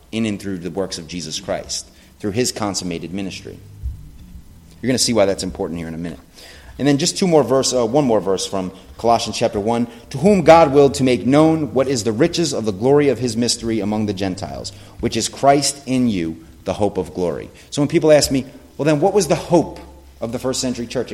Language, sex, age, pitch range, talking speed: English, male, 30-49, 85-135 Hz, 235 wpm